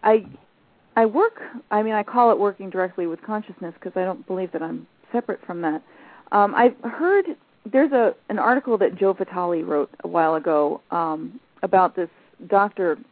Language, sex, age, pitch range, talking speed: English, female, 40-59, 180-235 Hz, 180 wpm